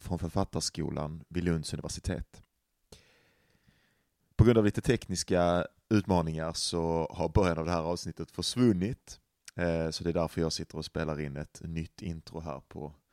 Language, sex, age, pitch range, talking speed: Swedish, male, 30-49, 80-95 Hz, 150 wpm